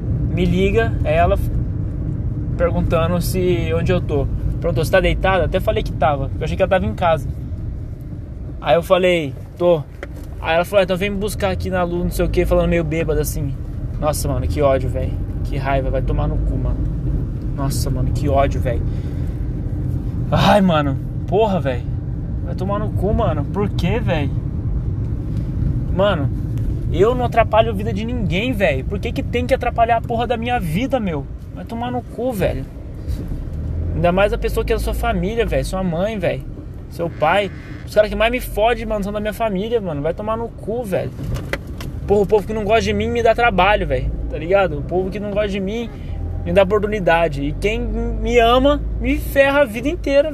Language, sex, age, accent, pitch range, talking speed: Portuguese, male, 20-39, Brazilian, 125-215 Hz, 200 wpm